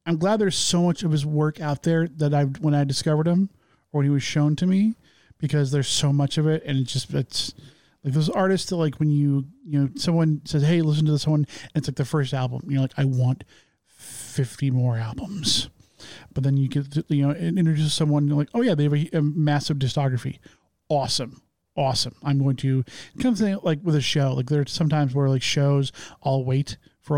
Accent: American